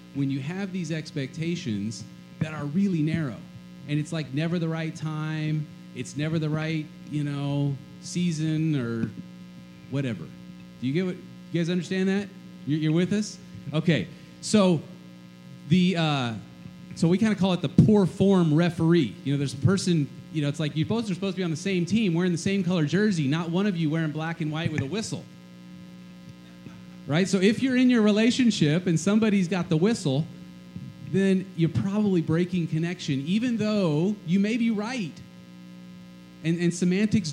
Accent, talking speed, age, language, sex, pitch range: American, 180 wpm, 30-49, English, male, 130-185 Hz